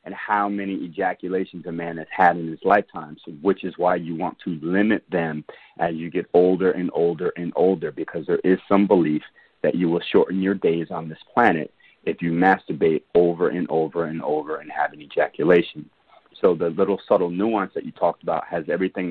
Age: 40-59